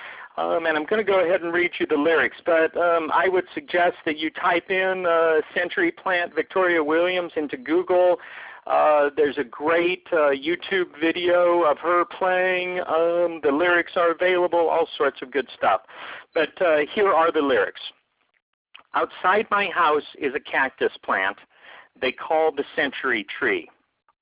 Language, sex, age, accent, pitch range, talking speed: English, male, 50-69, American, 150-185 Hz, 165 wpm